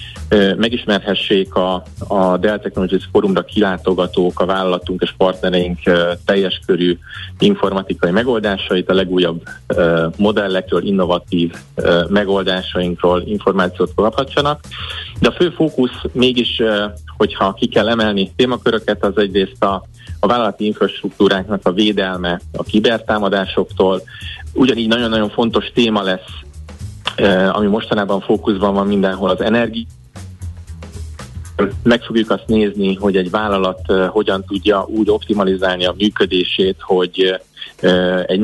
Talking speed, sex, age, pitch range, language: 110 wpm, male, 30-49, 90-105 Hz, Hungarian